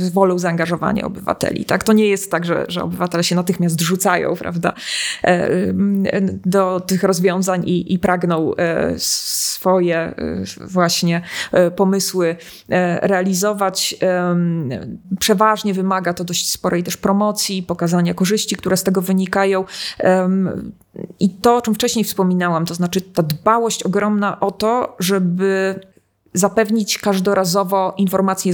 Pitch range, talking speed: 180-205 Hz, 110 wpm